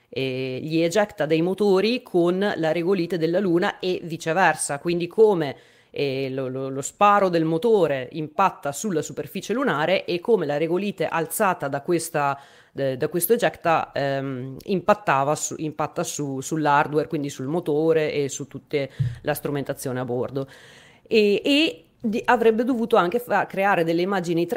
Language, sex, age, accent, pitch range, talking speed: Italian, female, 30-49, native, 150-190 Hz, 150 wpm